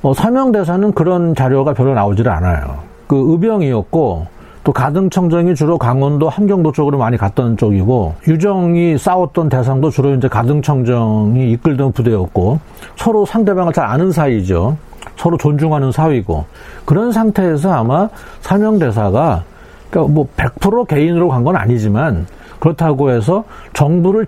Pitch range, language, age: 115-165 Hz, Korean, 40-59